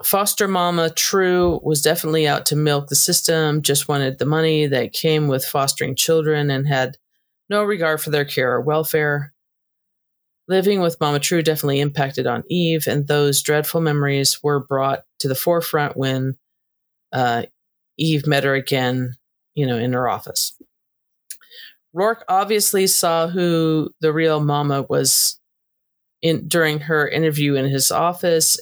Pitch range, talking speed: 140-170 Hz, 145 wpm